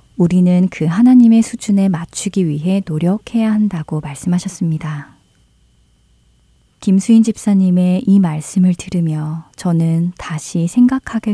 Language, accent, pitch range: Korean, native, 155-195 Hz